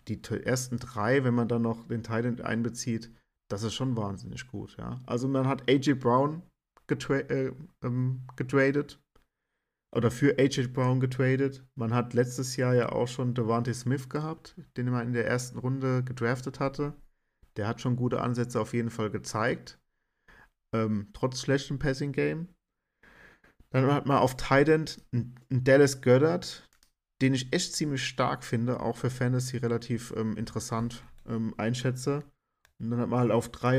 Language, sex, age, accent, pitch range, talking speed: German, male, 50-69, German, 120-135 Hz, 160 wpm